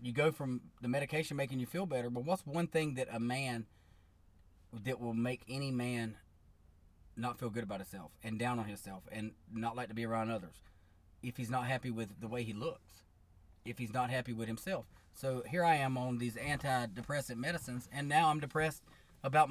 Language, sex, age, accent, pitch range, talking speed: English, male, 30-49, American, 110-135 Hz, 200 wpm